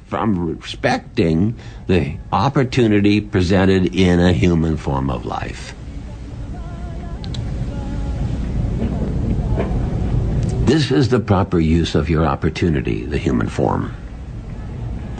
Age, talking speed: 60-79, 85 wpm